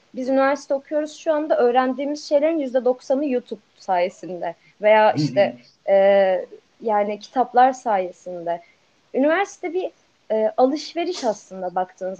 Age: 30-49